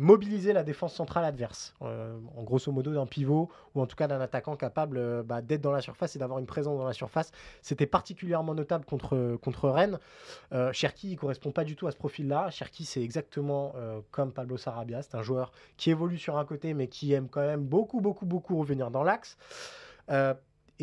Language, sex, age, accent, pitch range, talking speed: French, male, 20-39, French, 140-185 Hz, 215 wpm